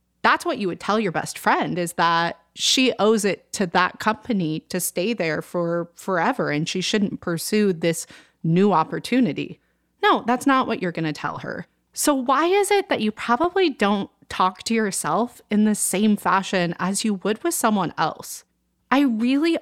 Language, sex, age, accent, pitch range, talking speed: English, female, 30-49, American, 185-250 Hz, 185 wpm